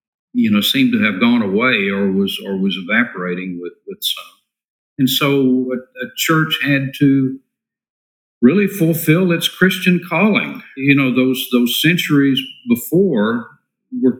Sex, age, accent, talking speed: male, 50-69, American, 145 wpm